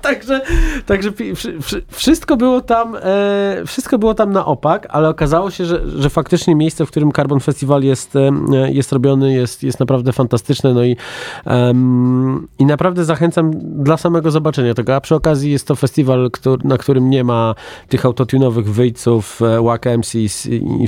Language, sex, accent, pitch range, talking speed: Polish, male, native, 110-145 Hz, 160 wpm